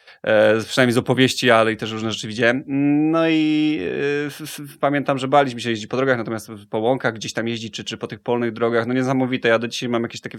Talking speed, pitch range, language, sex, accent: 245 wpm, 115-130 Hz, Polish, male, native